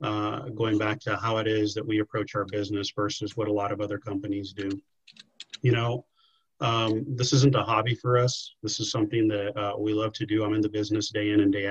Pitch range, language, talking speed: 100-110 Hz, English, 235 wpm